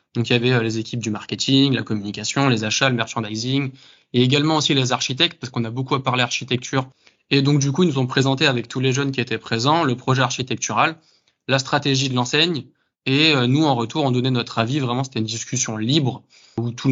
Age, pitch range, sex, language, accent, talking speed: 20-39, 120-140 Hz, male, English, French, 230 wpm